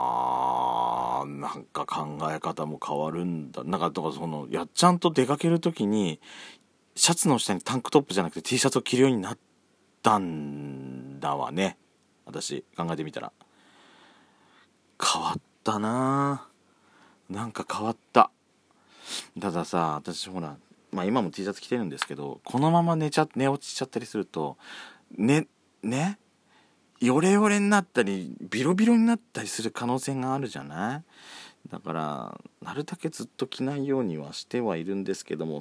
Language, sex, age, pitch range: Japanese, male, 40-59, 85-140 Hz